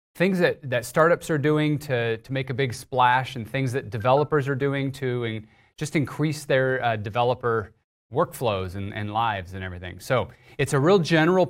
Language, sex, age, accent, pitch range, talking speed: English, male, 30-49, American, 115-145 Hz, 185 wpm